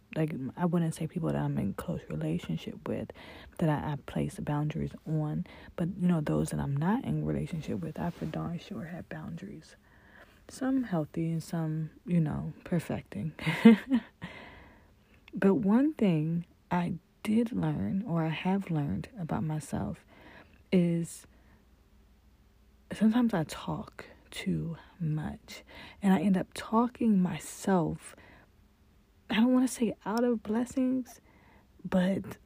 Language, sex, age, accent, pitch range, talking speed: English, female, 30-49, American, 150-195 Hz, 135 wpm